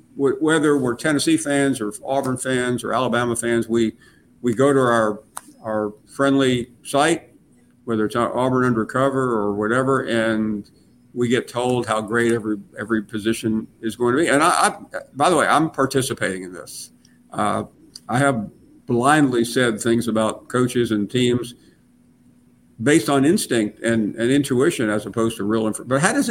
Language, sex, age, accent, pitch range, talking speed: English, male, 50-69, American, 110-135 Hz, 160 wpm